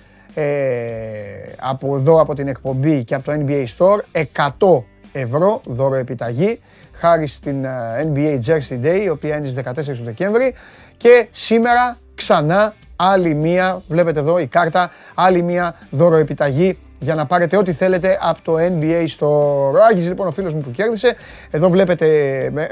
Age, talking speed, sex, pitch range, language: 30-49, 155 wpm, male, 145-210 Hz, Greek